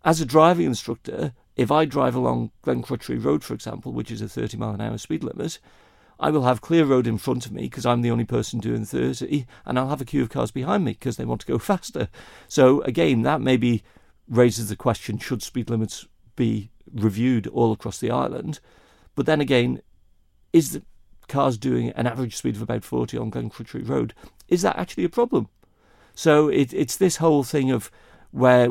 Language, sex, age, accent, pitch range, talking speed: English, male, 50-69, British, 105-135 Hz, 200 wpm